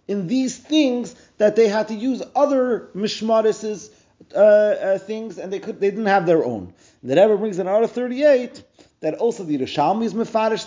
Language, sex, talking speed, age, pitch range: English, male, 195 wpm, 30-49, 150-235 Hz